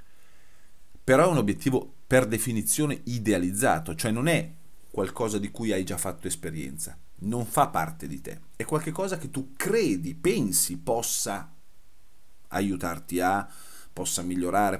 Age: 40-59